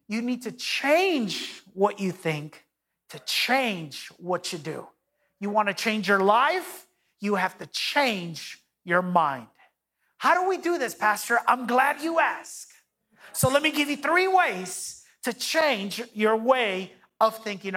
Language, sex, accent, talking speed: English, male, American, 160 wpm